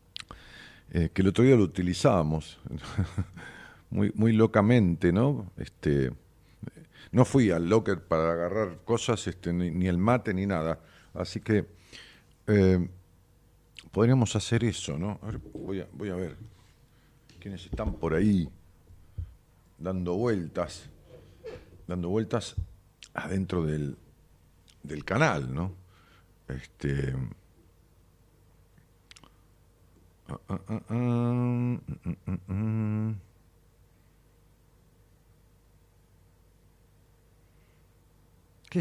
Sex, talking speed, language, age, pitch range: male, 85 wpm, Spanish, 50-69, 90-115 Hz